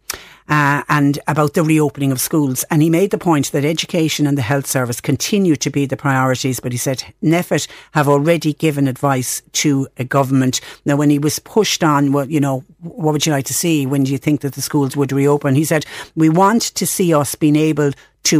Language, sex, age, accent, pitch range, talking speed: English, female, 60-79, Irish, 125-150 Hz, 220 wpm